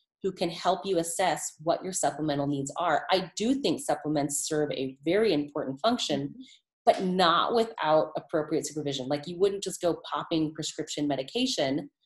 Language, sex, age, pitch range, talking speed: English, female, 30-49, 155-215 Hz, 160 wpm